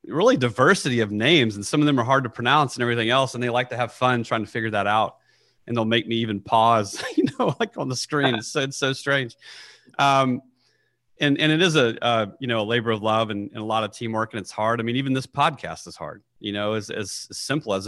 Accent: American